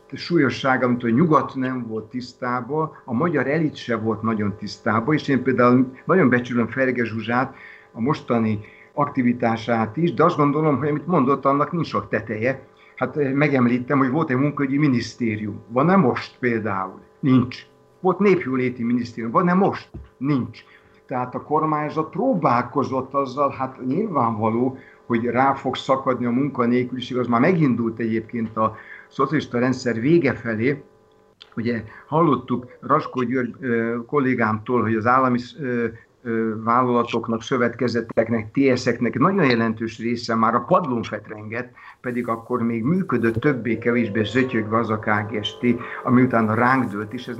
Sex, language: male, Hungarian